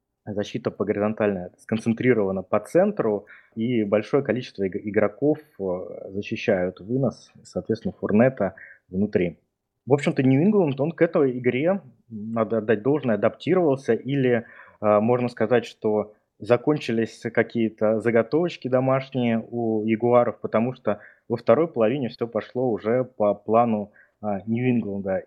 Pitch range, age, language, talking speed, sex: 105-125 Hz, 20-39, Russian, 110 wpm, male